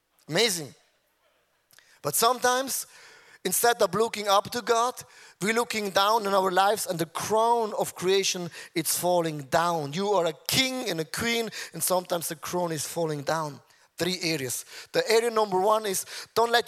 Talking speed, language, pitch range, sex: 165 wpm, English, 170-215 Hz, male